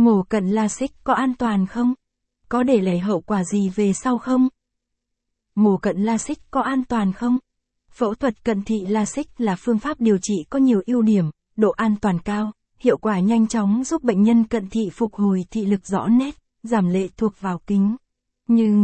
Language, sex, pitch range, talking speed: Vietnamese, female, 205-235 Hz, 205 wpm